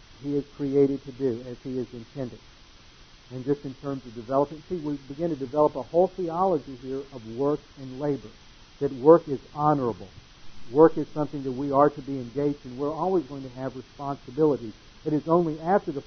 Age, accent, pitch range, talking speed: 60-79, American, 125-145 Hz, 200 wpm